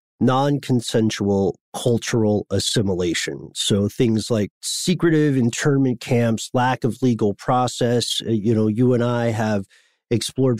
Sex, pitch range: male, 105-125 Hz